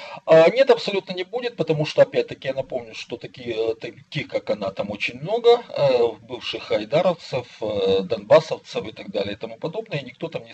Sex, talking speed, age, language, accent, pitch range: male, 170 wpm, 40-59, Russian, native, 135-220 Hz